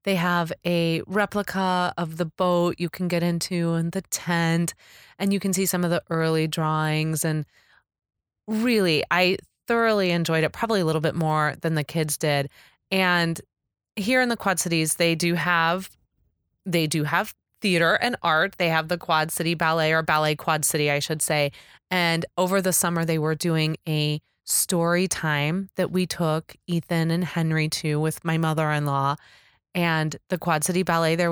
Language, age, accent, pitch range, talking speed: English, 20-39, American, 155-180 Hz, 175 wpm